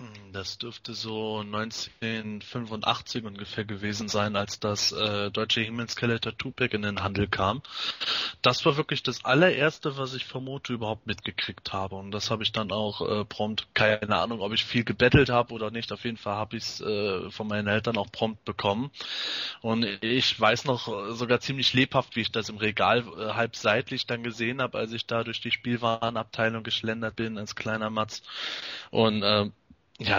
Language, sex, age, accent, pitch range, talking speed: German, male, 20-39, German, 110-120 Hz, 175 wpm